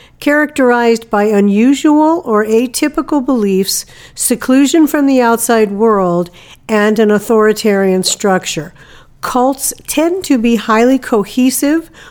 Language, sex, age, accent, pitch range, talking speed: English, female, 50-69, American, 200-250 Hz, 105 wpm